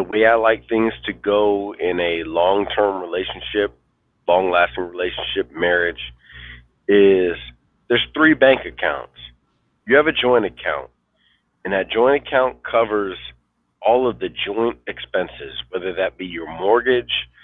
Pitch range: 85-115 Hz